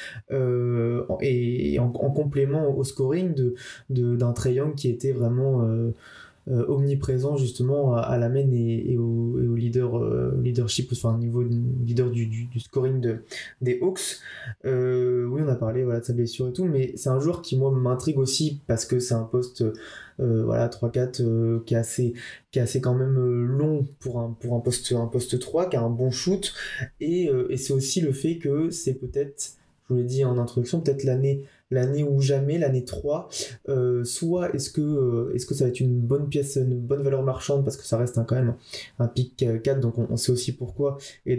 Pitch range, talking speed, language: 120-140 Hz, 220 wpm, French